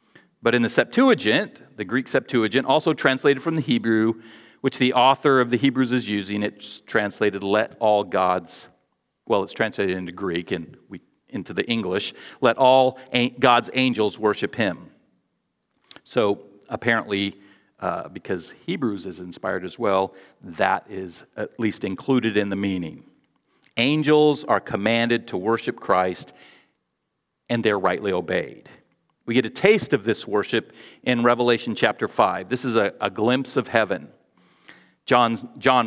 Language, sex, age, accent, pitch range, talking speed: English, male, 40-59, American, 110-150 Hz, 145 wpm